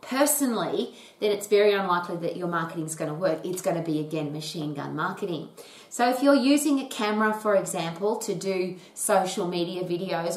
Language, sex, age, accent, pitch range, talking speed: English, female, 30-49, Australian, 170-215 Hz, 180 wpm